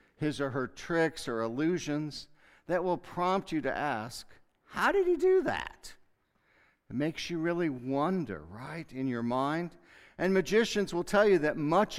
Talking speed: 165 wpm